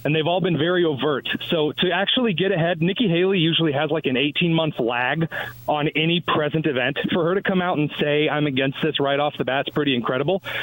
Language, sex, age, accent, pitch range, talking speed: English, male, 30-49, American, 135-180 Hz, 220 wpm